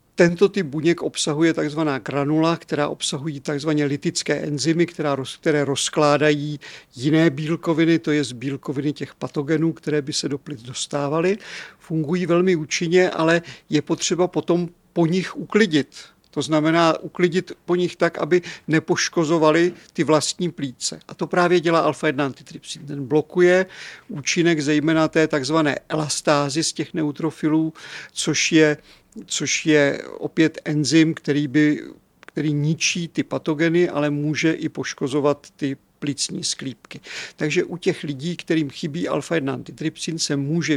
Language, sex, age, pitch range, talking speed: Czech, male, 50-69, 150-170 Hz, 130 wpm